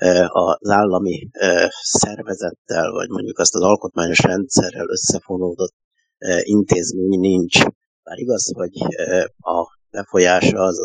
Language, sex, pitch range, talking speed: Hungarian, male, 90-100 Hz, 100 wpm